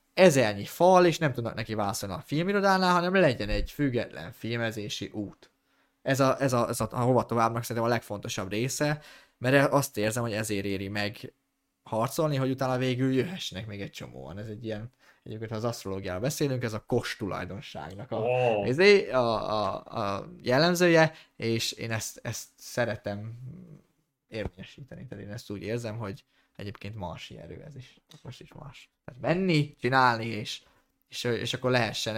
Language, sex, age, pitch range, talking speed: Hungarian, male, 20-39, 110-150 Hz, 160 wpm